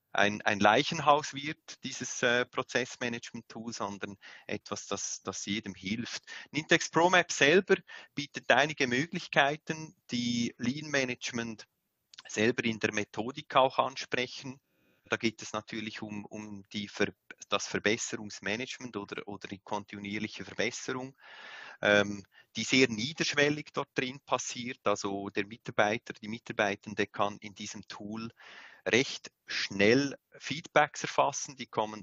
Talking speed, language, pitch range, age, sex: 120 wpm, German, 100-130 Hz, 30-49, male